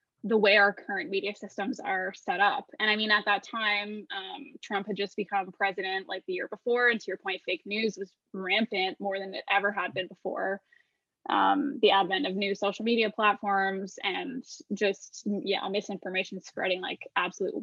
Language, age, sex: English, 10-29, female